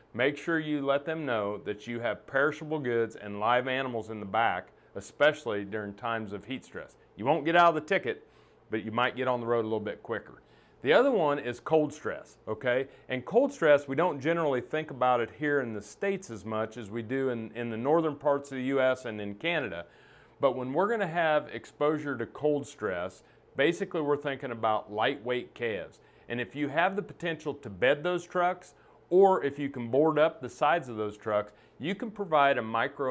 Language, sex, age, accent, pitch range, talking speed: English, male, 40-59, American, 115-150 Hz, 215 wpm